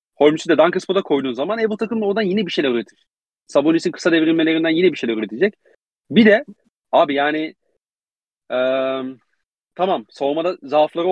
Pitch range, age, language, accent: 125-175 Hz, 40-59, Turkish, native